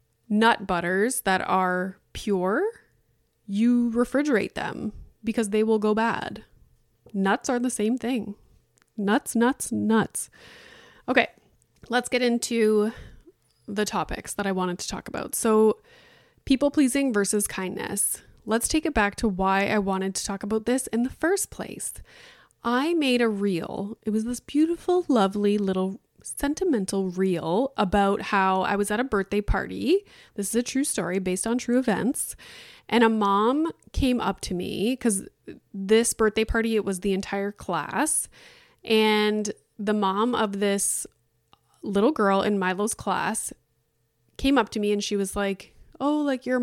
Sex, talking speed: female, 155 wpm